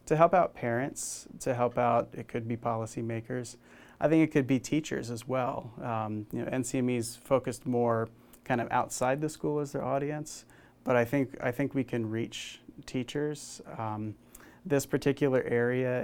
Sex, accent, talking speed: male, American, 170 wpm